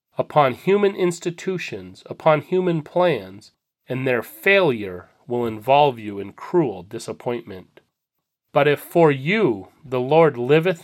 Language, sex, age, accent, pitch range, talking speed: English, male, 30-49, American, 125-165 Hz, 120 wpm